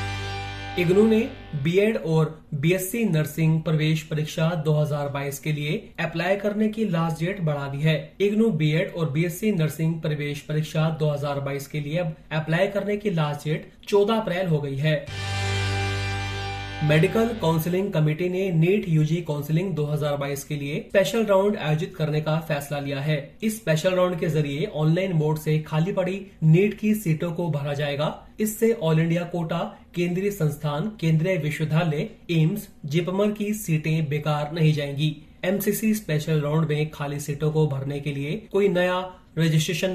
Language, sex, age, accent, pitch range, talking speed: Hindi, male, 30-49, native, 150-185 Hz, 155 wpm